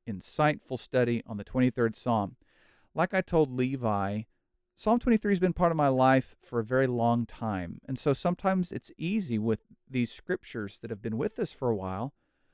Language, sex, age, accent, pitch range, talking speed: English, male, 50-69, American, 115-150 Hz, 185 wpm